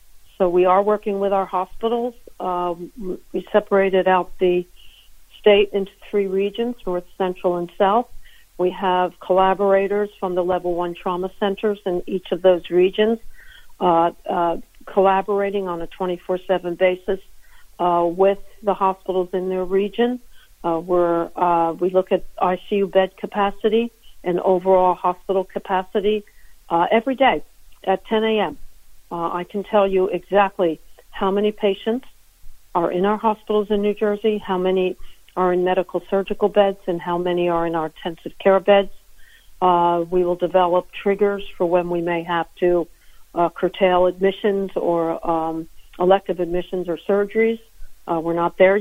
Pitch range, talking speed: 180-200 Hz, 150 wpm